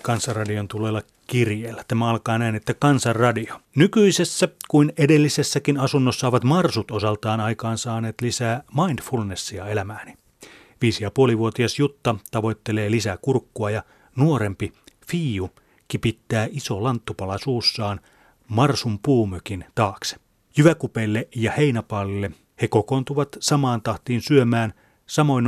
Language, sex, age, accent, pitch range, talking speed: Finnish, male, 30-49, native, 110-140 Hz, 105 wpm